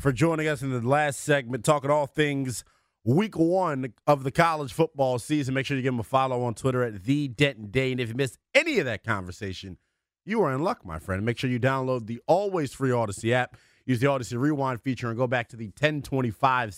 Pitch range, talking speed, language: 115-140 Hz, 225 wpm, English